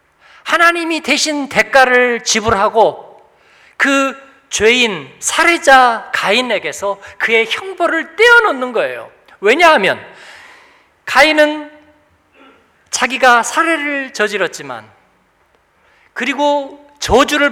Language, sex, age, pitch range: Korean, male, 40-59, 250-310 Hz